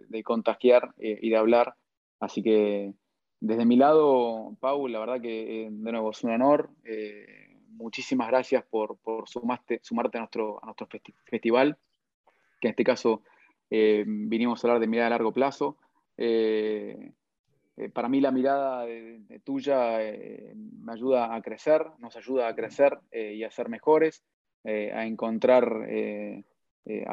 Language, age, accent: Spanish, 20-39, Argentinian